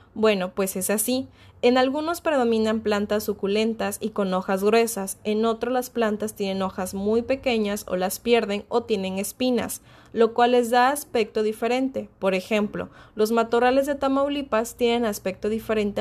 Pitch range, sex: 195-240 Hz, female